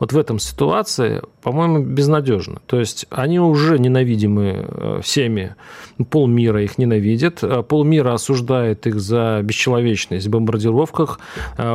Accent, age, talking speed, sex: native, 40-59, 110 wpm, male